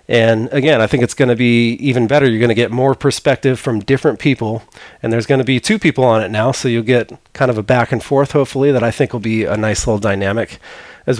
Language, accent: English, American